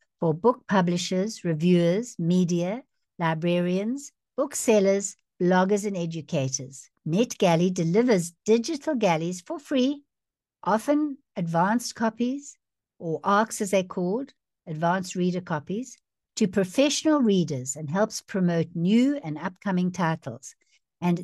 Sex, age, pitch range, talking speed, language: female, 60-79, 155-220 Hz, 105 wpm, English